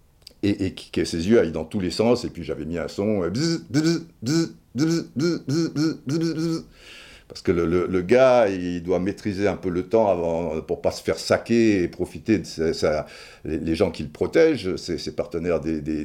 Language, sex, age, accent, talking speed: French, male, 60-79, French, 200 wpm